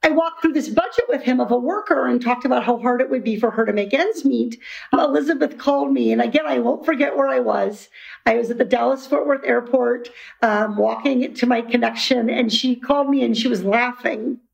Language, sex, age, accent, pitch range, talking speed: English, female, 50-69, American, 240-305 Hz, 225 wpm